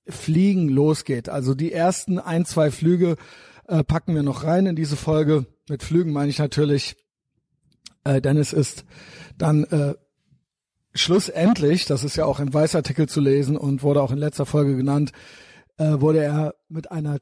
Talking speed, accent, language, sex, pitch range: 165 wpm, German, German, male, 140-160 Hz